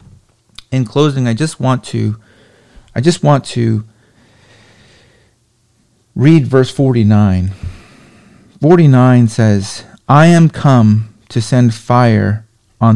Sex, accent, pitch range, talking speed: male, American, 110-130 Hz, 110 wpm